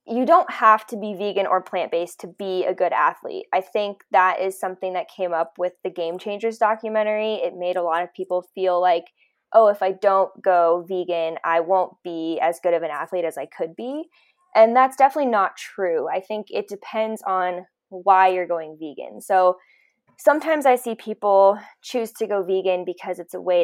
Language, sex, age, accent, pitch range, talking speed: English, female, 10-29, American, 180-225 Hz, 200 wpm